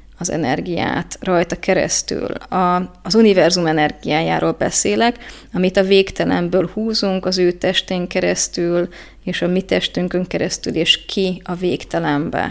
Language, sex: Hungarian, female